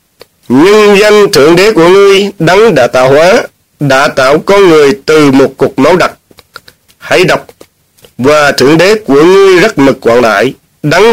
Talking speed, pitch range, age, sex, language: 160 wpm, 155-210 Hz, 30-49, male, Vietnamese